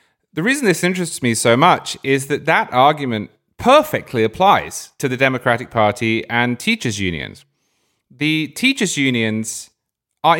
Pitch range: 105-145 Hz